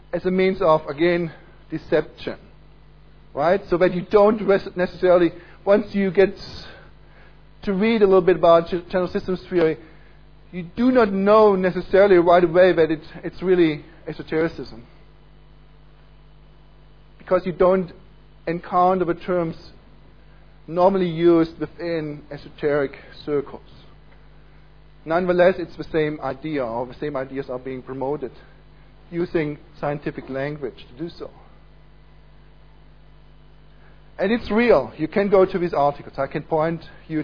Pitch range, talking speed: 155-185 Hz, 125 wpm